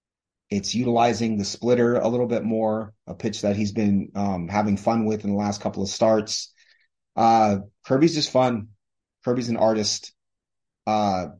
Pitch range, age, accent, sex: 105-130 Hz, 30-49, American, male